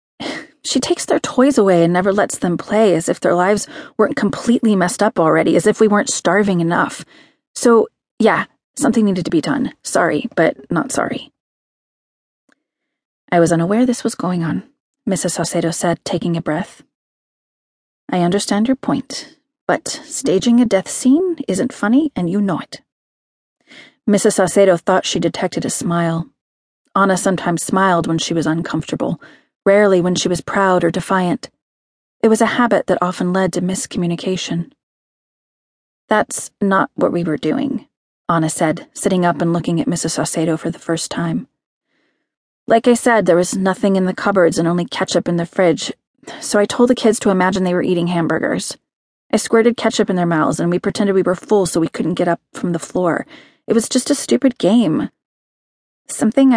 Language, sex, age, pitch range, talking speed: English, female, 30-49, 175-230 Hz, 175 wpm